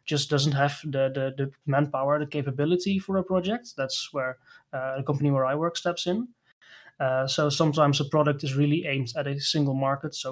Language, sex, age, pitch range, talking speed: English, male, 20-39, 140-155 Hz, 205 wpm